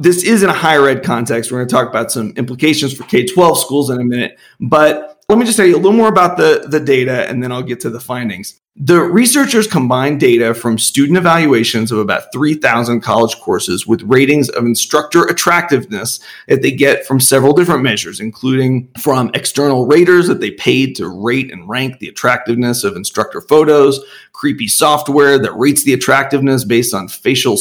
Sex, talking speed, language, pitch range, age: male, 195 wpm, English, 120-155 Hz, 40-59